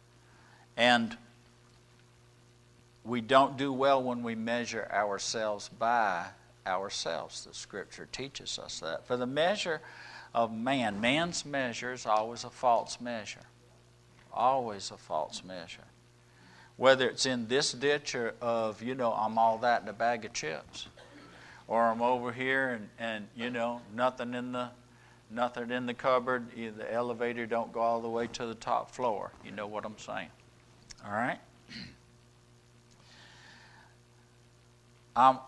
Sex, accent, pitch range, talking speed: male, American, 105-135 Hz, 140 wpm